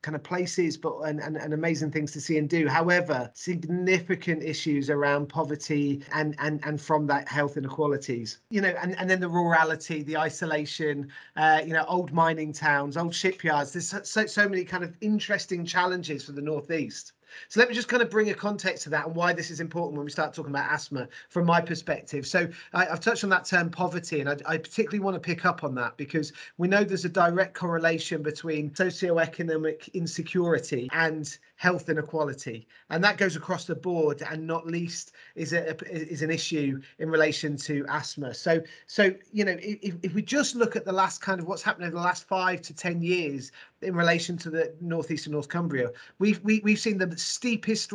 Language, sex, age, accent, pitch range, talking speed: English, male, 30-49, British, 150-185 Hz, 205 wpm